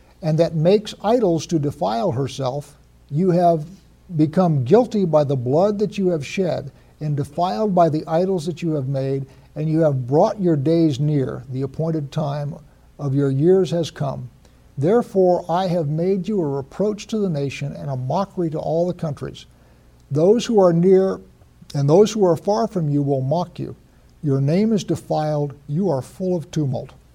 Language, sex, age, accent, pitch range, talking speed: English, male, 60-79, American, 135-175 Hz, 180 wpm